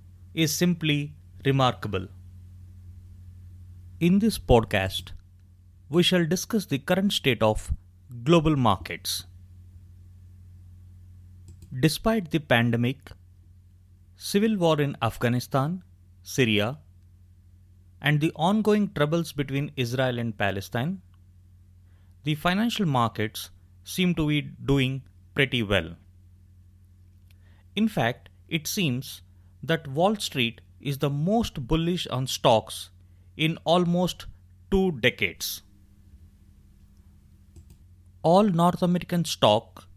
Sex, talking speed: male, 90 wpm